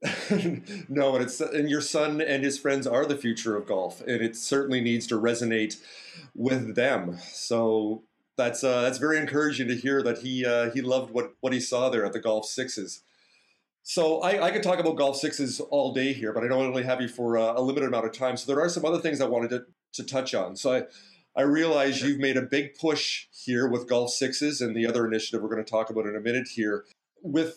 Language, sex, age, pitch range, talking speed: English, male, 40-59, 120-150 Hz, 235 wpm